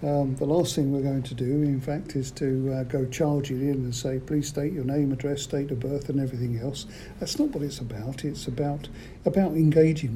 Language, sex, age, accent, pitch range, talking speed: English, male, 60-79, British, 135-165 Hz, 230 wpm